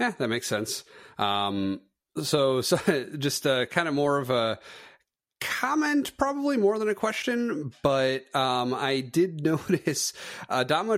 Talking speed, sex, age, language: 140 wpm, male, 30-49, English